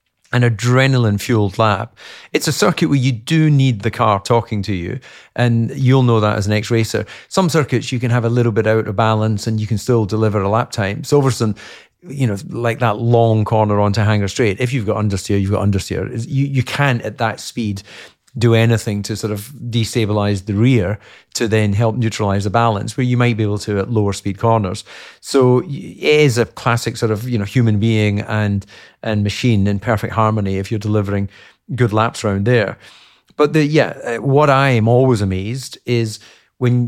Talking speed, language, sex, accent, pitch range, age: 200 wpm, English, male, British, 105-125 Hz, 40-59